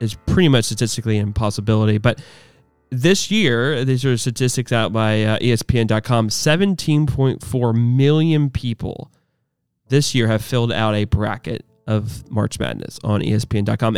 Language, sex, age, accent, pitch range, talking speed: English, male, 20-39, American, 110-125 Hz, 135 wpm